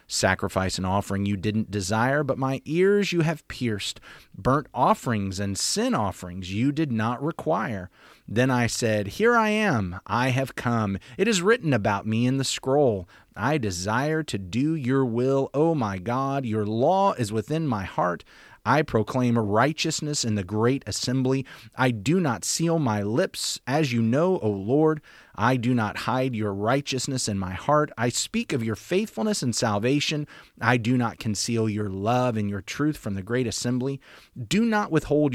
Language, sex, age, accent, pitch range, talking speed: English, male, 30-49, American, 110-150 Hz, 175 wpm